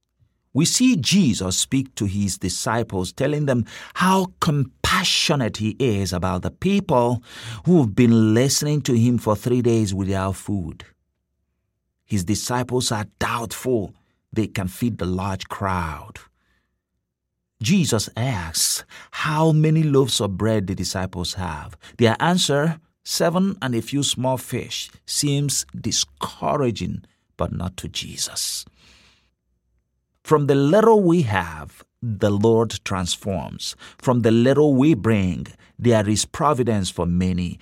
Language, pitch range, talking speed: English, 90-130 Hz, 125 wpm